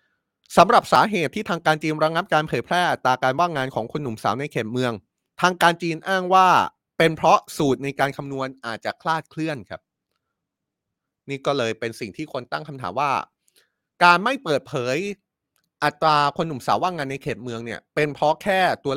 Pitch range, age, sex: 115-155 Hz, 30-49, male